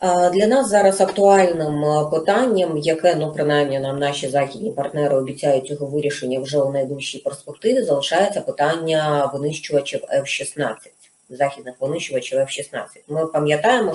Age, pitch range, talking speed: 30-49, 145-200 Hz, 120 wpm